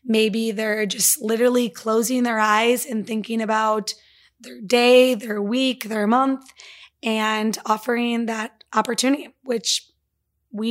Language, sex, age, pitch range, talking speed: English, female, 20-39, 215-250 Hz, 125 wpm